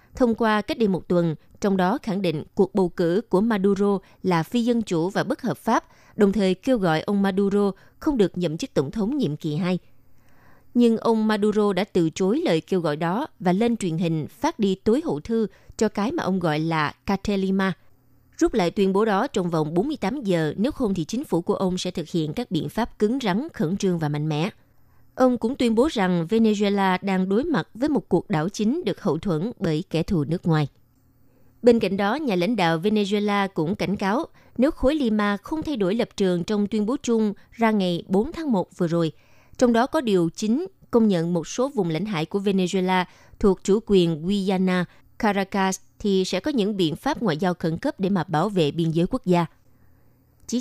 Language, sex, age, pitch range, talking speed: Vietnamese, female, 20-39, 170-220 Hz, 215 wpm